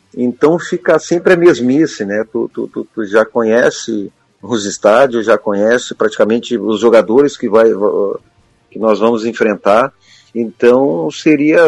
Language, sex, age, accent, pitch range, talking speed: Portuguese, male, 40-59, Brazilian, 115-150 Hz, 140 wpm